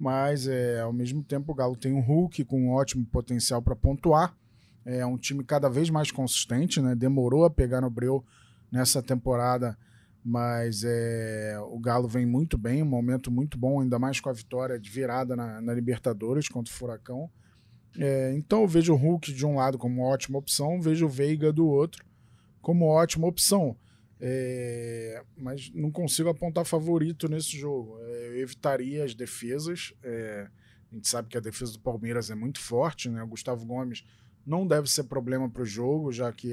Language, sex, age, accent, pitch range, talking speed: Portuguese, male, 20-39, Brazilian, 120-145 Hz, 190 wpm